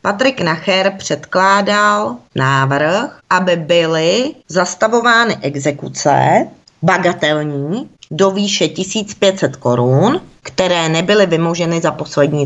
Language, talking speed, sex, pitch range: Czech, 85 wpm, female, 160-195 Hz